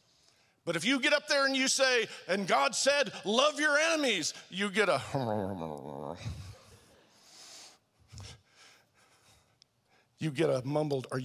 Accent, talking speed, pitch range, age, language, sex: American, 125 wpm, 195-245 Hz, 50-69, English, male